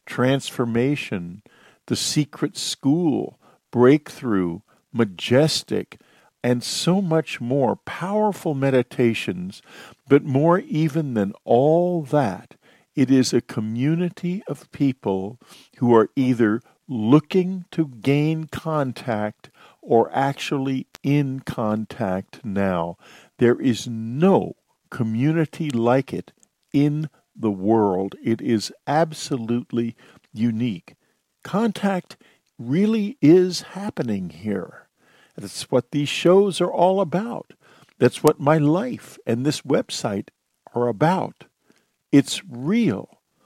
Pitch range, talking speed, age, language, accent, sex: 120-160 Hz, 100 wpm, 50-69, English, American, male